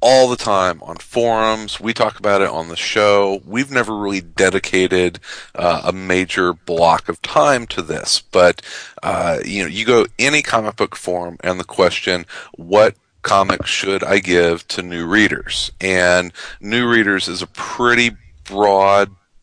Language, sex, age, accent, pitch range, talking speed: English, male, 40-59, American, 90-105 Hz, 160 wpm